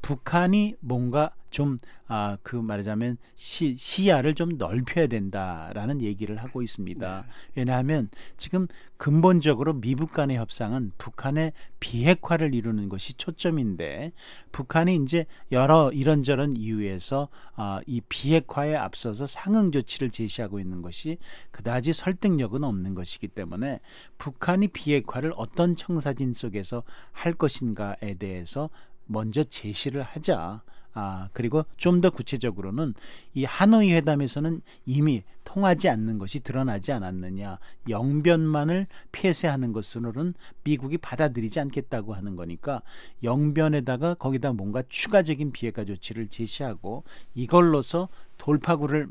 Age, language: 40-59, Korean